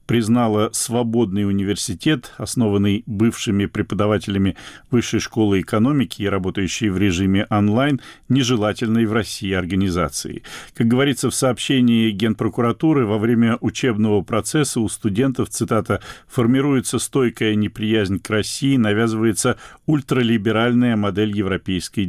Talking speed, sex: 105 wpm, male